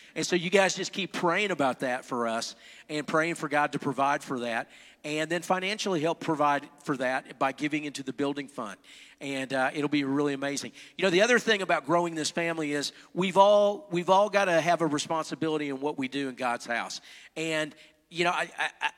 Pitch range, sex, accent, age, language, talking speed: 150-180 Hz, male, American, 50-69, English, 215 wpm